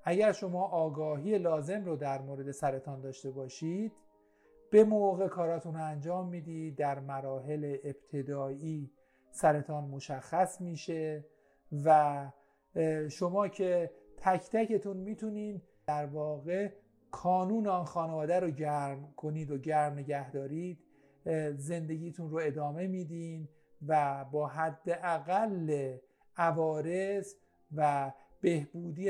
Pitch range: 145-185 Hz